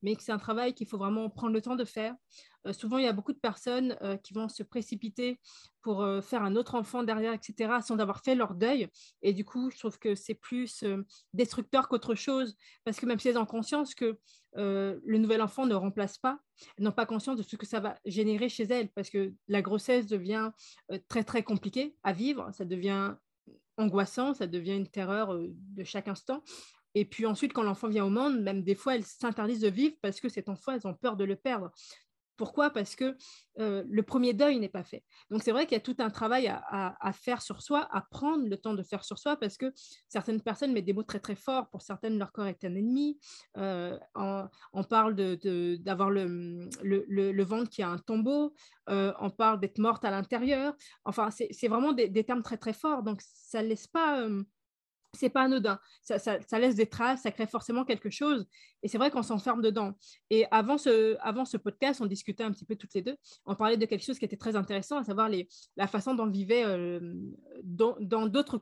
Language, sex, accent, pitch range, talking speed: French, female, French, 200-245 Hz, 235 wpm